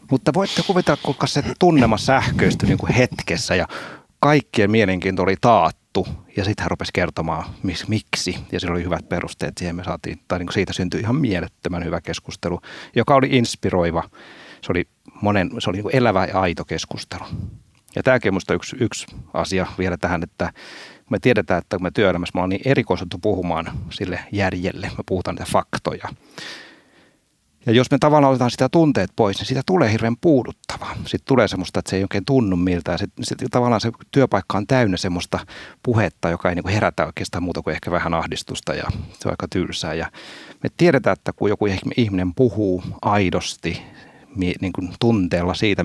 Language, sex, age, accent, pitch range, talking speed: Finnish, male, 30-49, native, 90-120 Hz, 170 wpm